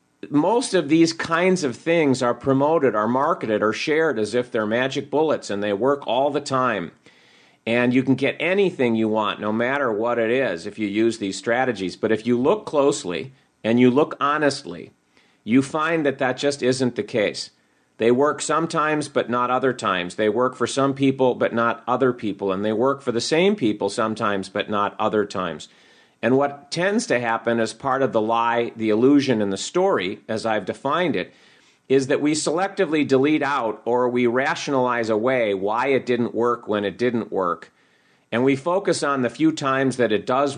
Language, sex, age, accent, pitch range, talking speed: English, male, 50-69, American, 115-145 Hz, 195 wpm